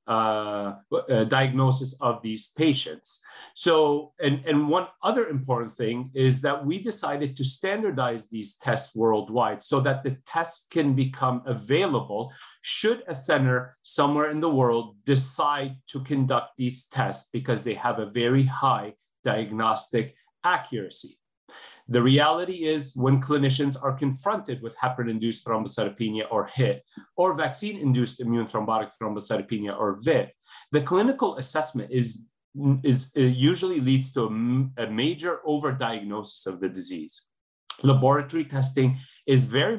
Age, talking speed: 40-59, 135 wpm